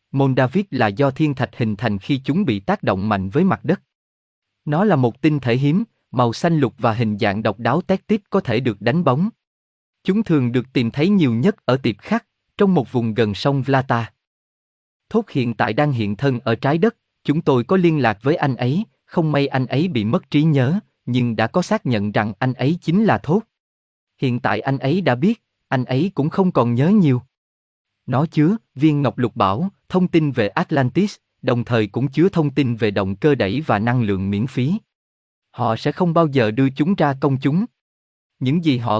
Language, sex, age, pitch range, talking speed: Vietnamese, male, 20-39, 115-170 Hz, 215 wpm